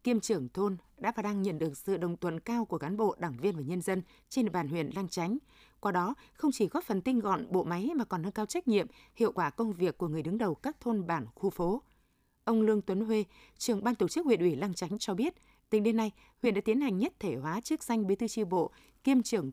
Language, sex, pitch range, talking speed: Vietnamese, female, 185-230 Hz, 265 wpm